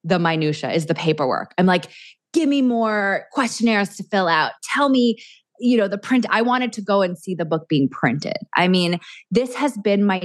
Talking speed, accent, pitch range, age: 210 wpm, American, 165-210 Hz, 20-39